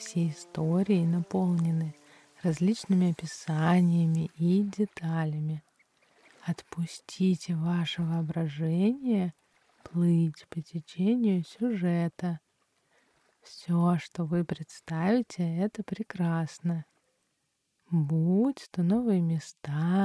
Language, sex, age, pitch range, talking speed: Russian, female, 20-39, 165-195 Hz, 70 wpm